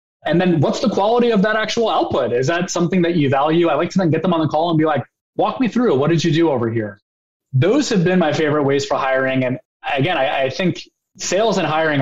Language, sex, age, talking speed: English, male, 20-39, 260 wpm